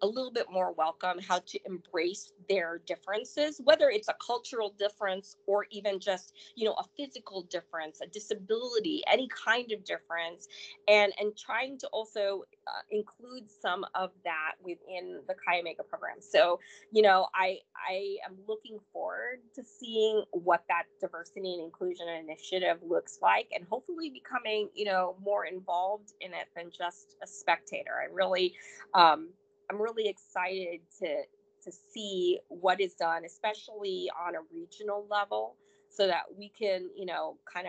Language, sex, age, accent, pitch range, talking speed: English, female, 20-39, American, 180-230 Hz, 160 wpm